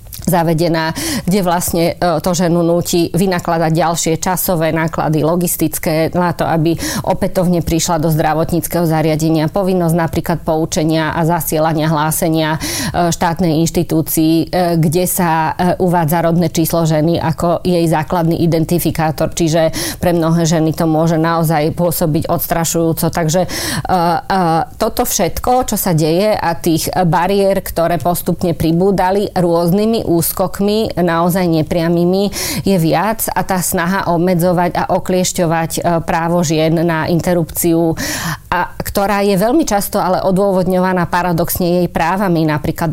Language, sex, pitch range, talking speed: Slovak, female, 160-185 Hz, 115 wpm